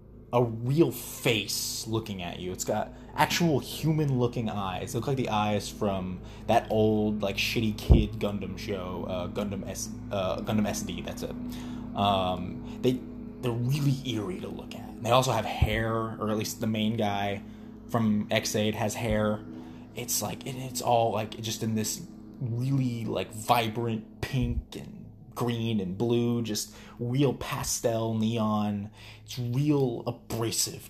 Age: 20-39